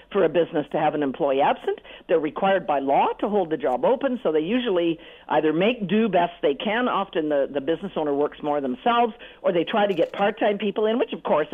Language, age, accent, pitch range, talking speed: English, 50-69, American, 160-255 Hz, 235 wpm